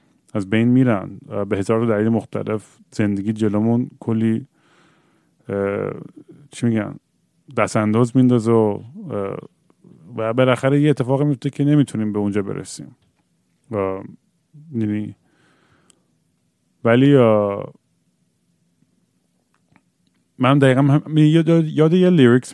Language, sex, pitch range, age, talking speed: Persian, male, 100-130 Hz, 30-49, 90 wpm